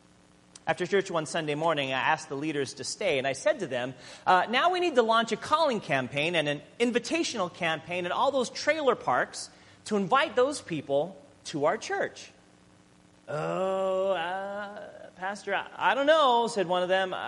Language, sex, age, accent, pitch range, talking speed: English, male, 40-59, American, 145-235 Hz, 180 wpm